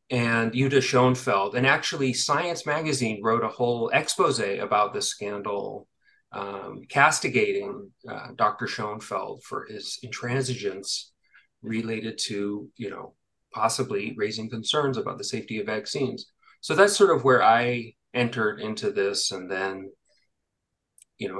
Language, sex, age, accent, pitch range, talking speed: English, male, 30-49, American, 115-140 Hz, 130 wpm